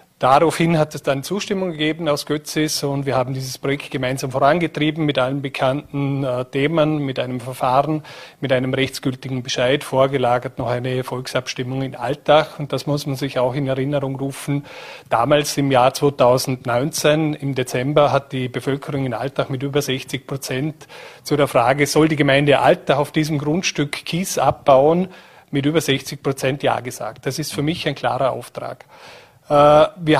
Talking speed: 165 wpm